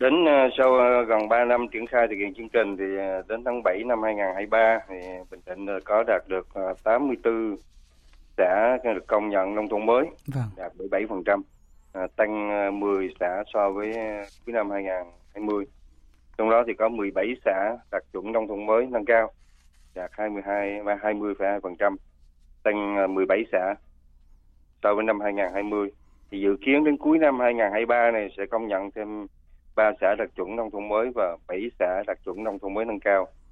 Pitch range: 90-110 Hz